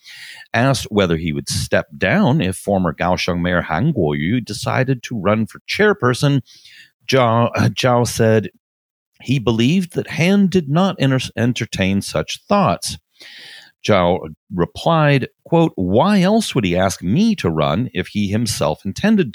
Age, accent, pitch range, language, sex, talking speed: 40-59, American, 90-145 Hz, English, male, 145 wpm